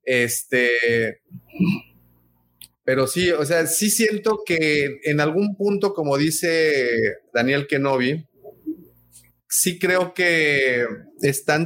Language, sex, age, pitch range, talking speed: Spanish, male, 30-49, 135-185 Hz, 100 wpm